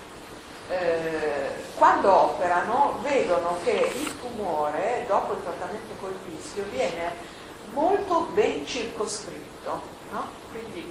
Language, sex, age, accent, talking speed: Italian, female, 40-59, native, 95 wpm